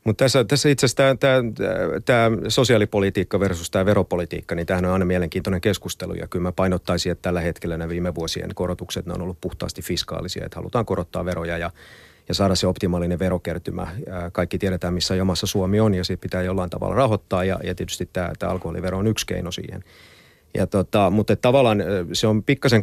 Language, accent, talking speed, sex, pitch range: Finnish, native, 180 wpm, male, 90-105 Hz